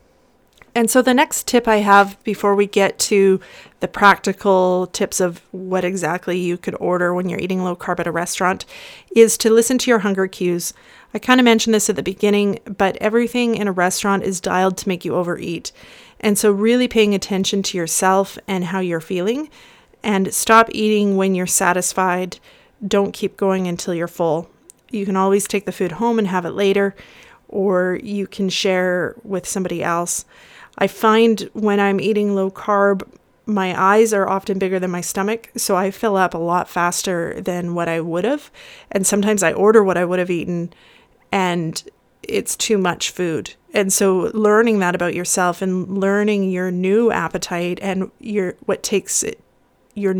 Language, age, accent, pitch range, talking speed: English, 30-49, American, 180-215 Hz, 180 wpm